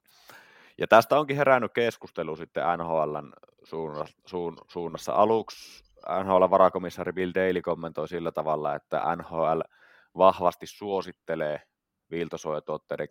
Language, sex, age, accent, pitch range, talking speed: Finnish, male, 20-39, native, 80-90 Hz, 105 wpm